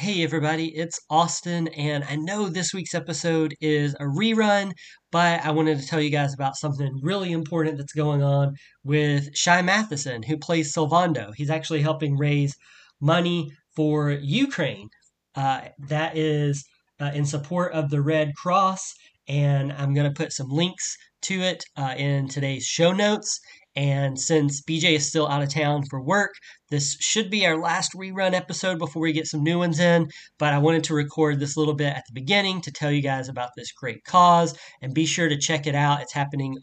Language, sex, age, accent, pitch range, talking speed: English, male, 30-49, American, 140-170 Hz, 190 wpm